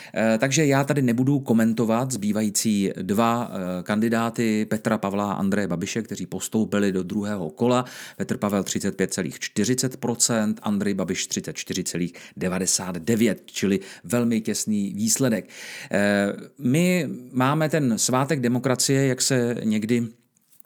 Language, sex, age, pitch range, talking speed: Czech, male, 40-59, 105-130 Hz, 105 wpm